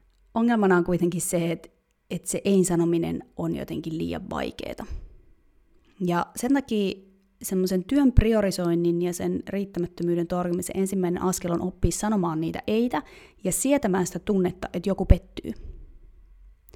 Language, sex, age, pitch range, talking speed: Finnish, female, 30-49, 165-200 Hz, 130 wpm